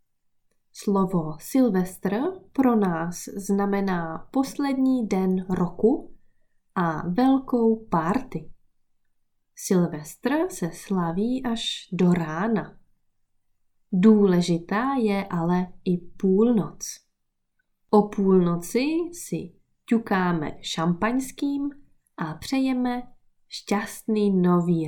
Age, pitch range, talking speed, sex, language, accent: 20-39, 170-235 Hz, 75 wpm, female, Czech, native